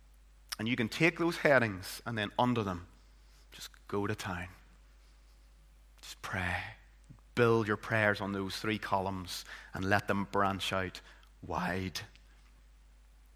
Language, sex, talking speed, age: English, male, 130 wpm, 30-49